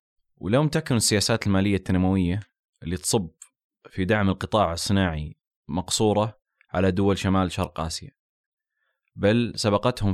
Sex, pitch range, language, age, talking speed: male, 95-110 Hz, Arabic, 20-39, 110 wpm